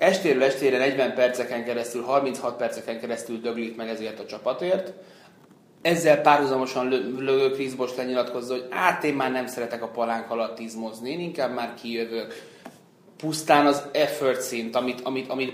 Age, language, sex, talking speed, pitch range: 30-49, Hungarian, male, 145 wpm, 120-145 Hz